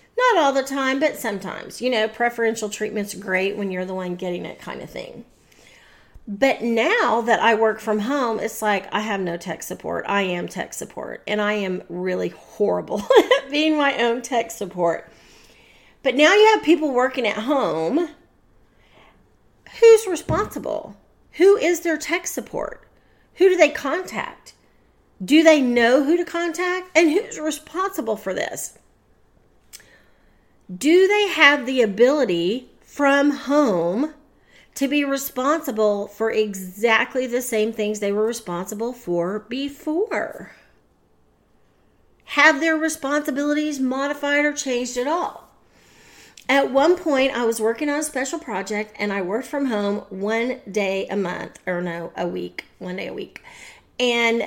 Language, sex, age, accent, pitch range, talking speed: English, female, 40-59, American, 210-295 Hz, 150 wpm